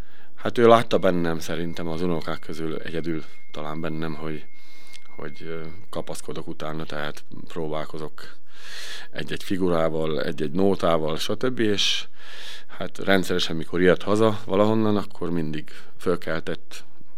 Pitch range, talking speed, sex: 80-95 Hz, 110 wpm, male